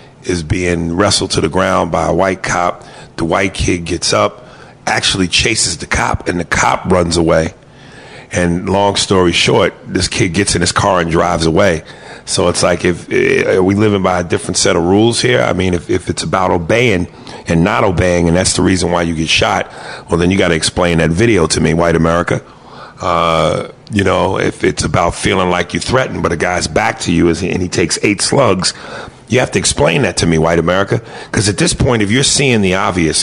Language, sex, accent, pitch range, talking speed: English, male, American, 85-120 Hz, 215 wpm